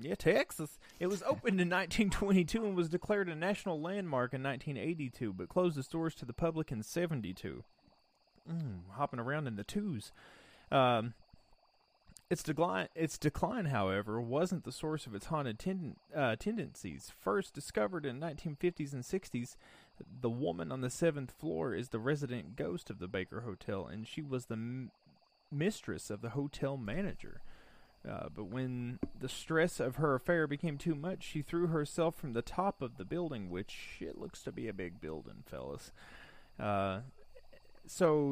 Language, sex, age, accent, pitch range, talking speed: English, male, 30-49, American, 115-170 Hz, 165 wpm